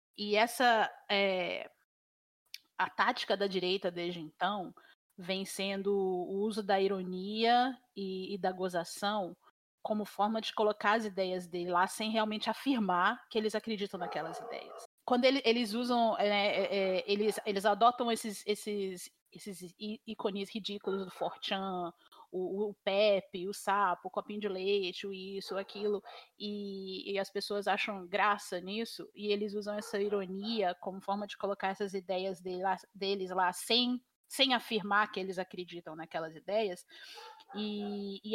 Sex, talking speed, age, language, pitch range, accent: female, 140 wpm, 30-49, Portuguese, 195-235 Hz, Brazilian